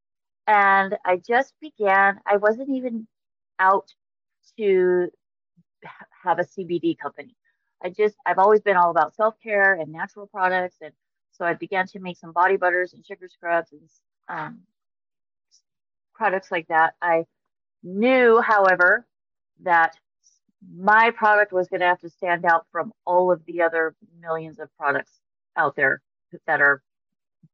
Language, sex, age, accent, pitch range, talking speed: English, female, 30-49, American, 170-215 Hz, 145 wpm